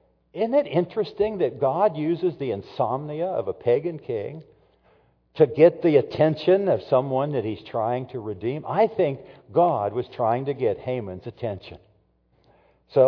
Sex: male